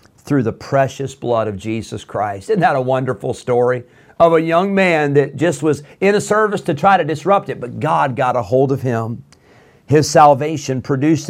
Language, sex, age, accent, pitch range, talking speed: English, male, 40-59, American, 125-155 Hz, 195 wpm